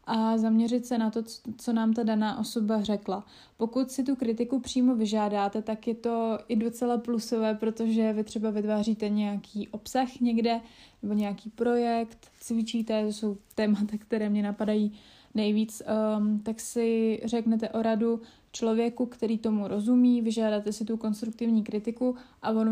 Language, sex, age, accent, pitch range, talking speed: Czech, female, 20-39, native, 215-235 Hz, 150 wpm